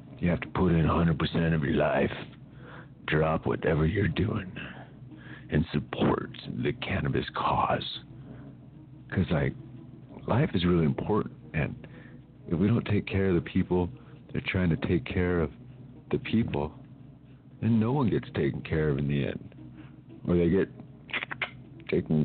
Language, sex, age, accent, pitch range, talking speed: English, male, 50-69, American, 80-130 Hz, 150 wpm